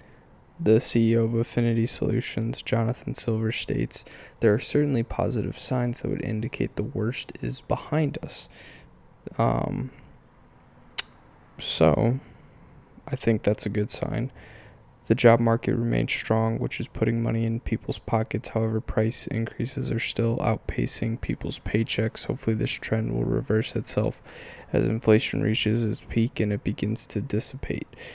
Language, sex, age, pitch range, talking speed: English, male, 10-29, 110-120 Hz, 140 wpm